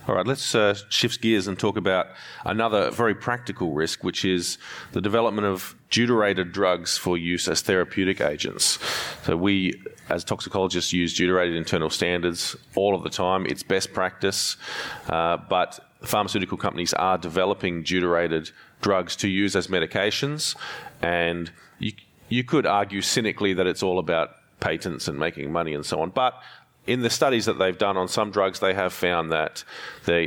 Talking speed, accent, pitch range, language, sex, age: 165 wpm, Australian, 85-100 Hz, English, male, 40-59